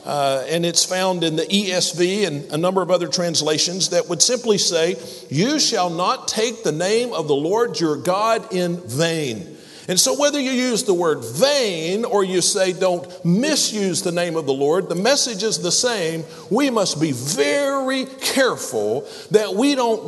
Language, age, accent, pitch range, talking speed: English, 50-69, American, 170-255 Hz, 180 wpm